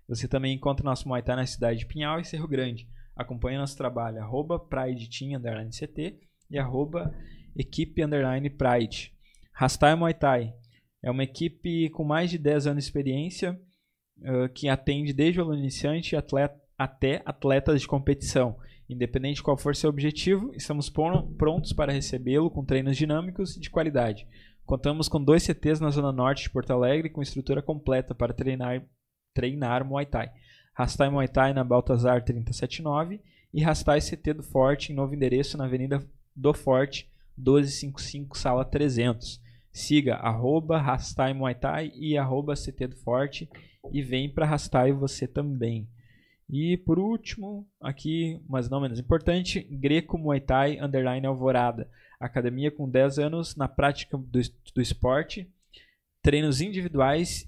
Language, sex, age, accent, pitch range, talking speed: Portuguese, male, 20-39, Brazilian, 130-150 Hz, 150 wpm